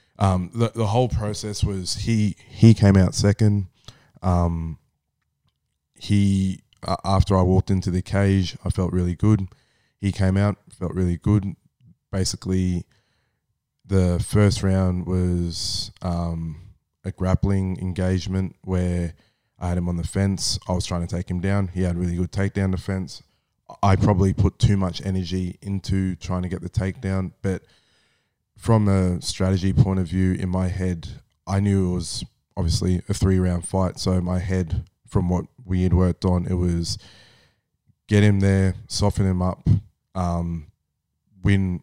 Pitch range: 90-100 Hz